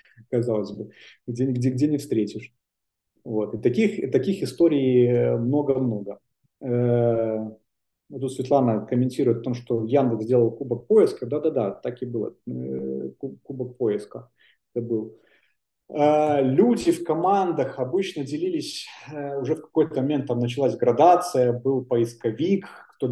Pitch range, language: 120-140 Hz, Russian